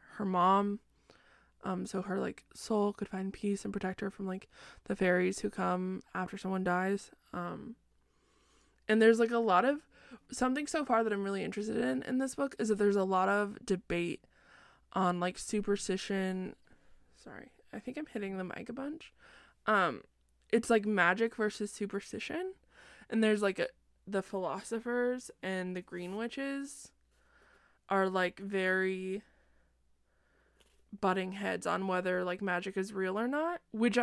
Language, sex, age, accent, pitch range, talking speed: English, female, 20-39, American, 185-230 Hz, 155 wpm